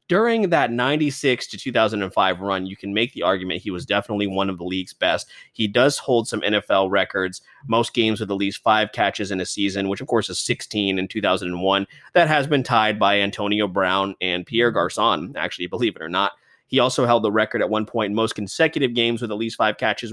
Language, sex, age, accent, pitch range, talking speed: English, male, 20-39, American, 95-115 Hz, 220 wpm